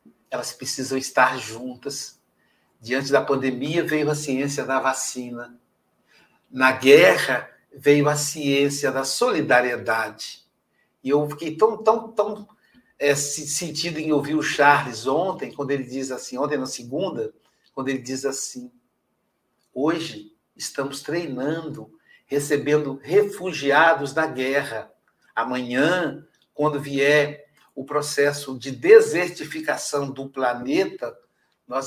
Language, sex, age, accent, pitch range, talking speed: Portuguese, male, 60-79, Brazilian, 130-160 Hz, 115 wpm